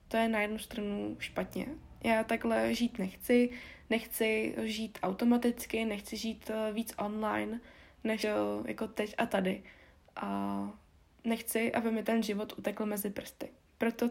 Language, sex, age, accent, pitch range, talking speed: Czech, female, 20-39, native, 200-230 Hz, 135 wpm